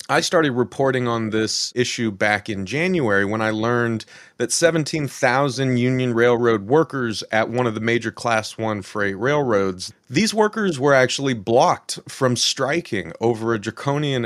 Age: 30-49